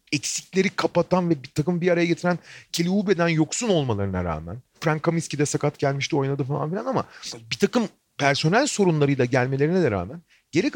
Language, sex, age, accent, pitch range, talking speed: Turkish, male, 40-59, native, 135-190 Hz, 165 wpm